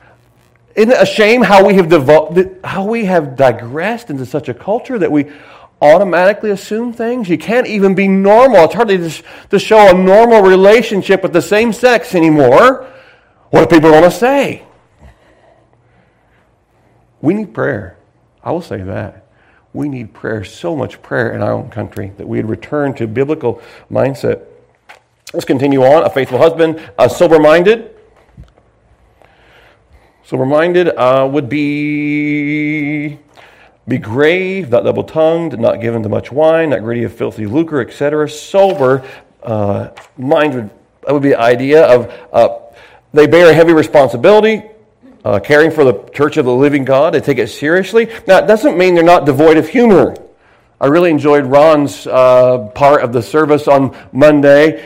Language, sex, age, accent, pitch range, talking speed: English, male, 40-59, American, 140-195 Hz, 150 wpm